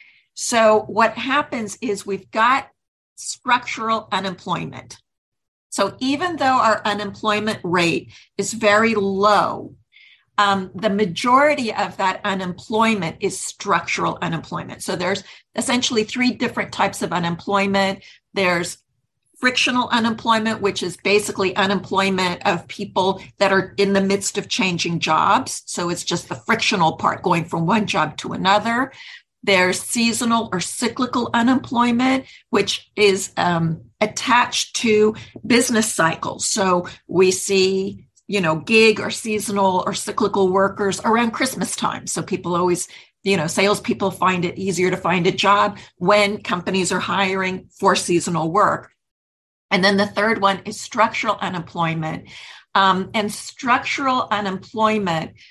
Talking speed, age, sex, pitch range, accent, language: 130 wpm, 50-69, female, 185-225 Hz, American, English